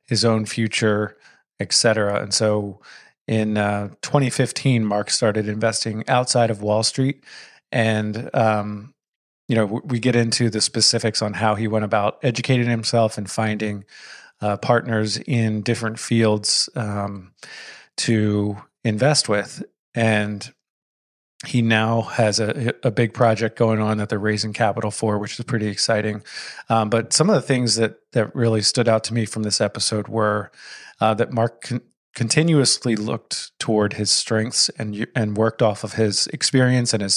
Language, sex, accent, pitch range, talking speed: English, male, American, 105-120 Hz, 155 wpm